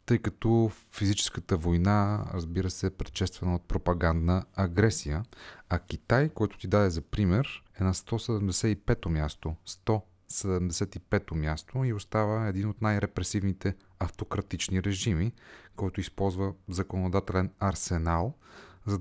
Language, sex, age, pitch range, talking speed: Bulgarian, male, 30-49, 90-110 Hz, 115 wpm